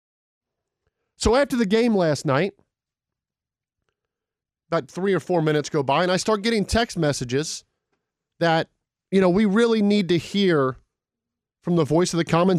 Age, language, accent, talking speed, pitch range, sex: 40-59, English, American, 155 wpm, 155-205 Hz, male